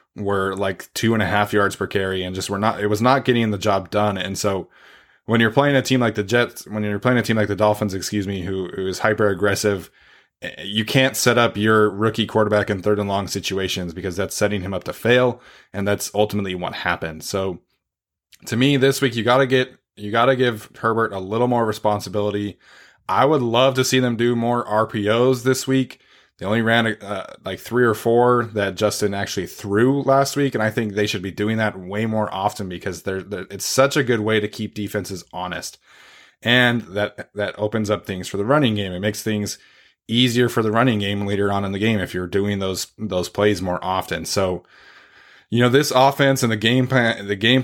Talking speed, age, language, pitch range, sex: 220 wpm, 20-39, English, 100-115 Hz, male